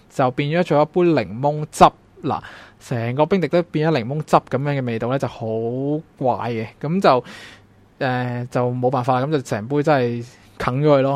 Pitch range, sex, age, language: 125-155 Hz, male, 20-39, Chinese